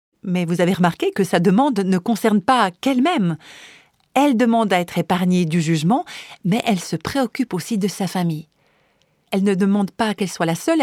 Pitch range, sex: 180-240 Hz, female